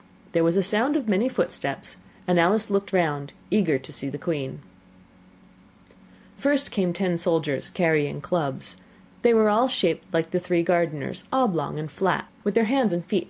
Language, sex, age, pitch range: Korean, female, 30-49, 165-210 Hz